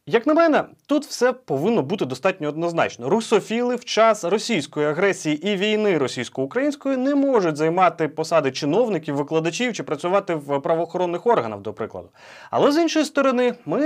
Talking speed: 150 wpm